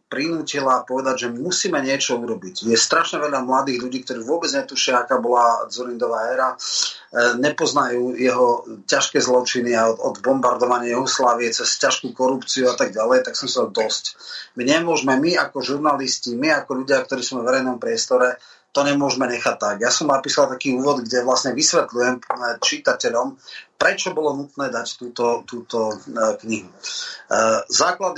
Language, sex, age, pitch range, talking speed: Slovak, male, 30-49, 125-140 Hz, 150 wpm